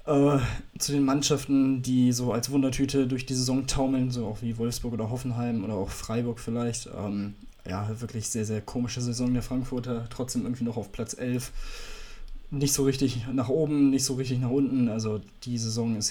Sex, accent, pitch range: male, German, 115-135 Hz